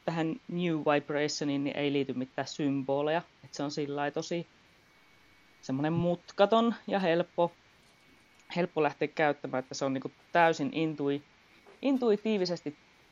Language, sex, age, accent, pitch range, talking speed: Finnish, female, 30-49, native, 145-185 Hz, 120 wpm